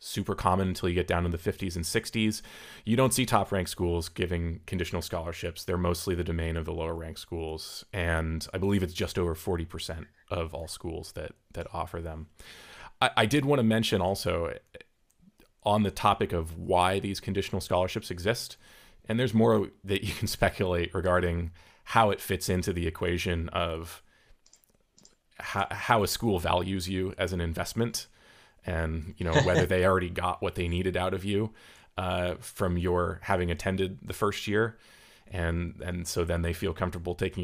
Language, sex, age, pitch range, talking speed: English, male, 30-49, 85-100 Hz, 180 wpm